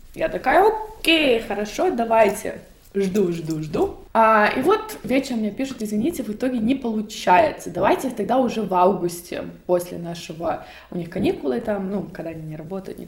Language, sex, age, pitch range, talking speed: Russian, female, 20-39, 185-265 Hz, 165 wpm